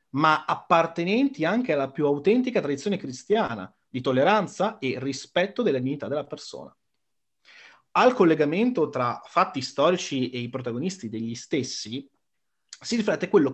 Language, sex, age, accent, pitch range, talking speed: Italian, male, 30-49, native, 130-215 Hz, 130 wpm